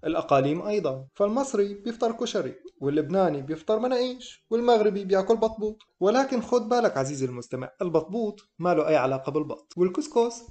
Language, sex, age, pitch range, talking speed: Arabic, male, 20-39, 140-205 Hz, 130 wpm